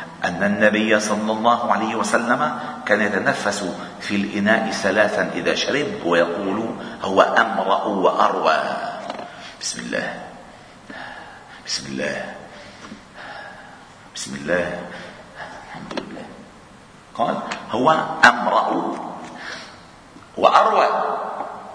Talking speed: 80 wpm